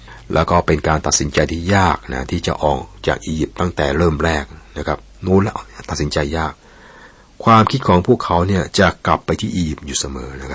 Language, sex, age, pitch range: Thai, male, 60-79, 70-90 Hz